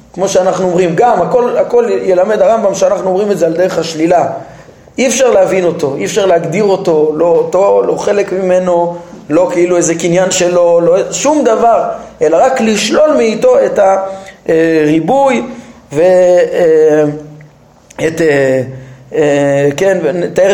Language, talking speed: Hebrew, 120 wpm